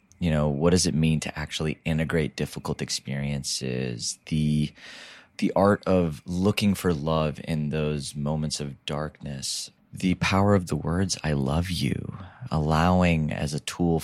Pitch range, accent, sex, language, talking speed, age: 75-90 Hz, American, male, English, 150 wpm, 30-49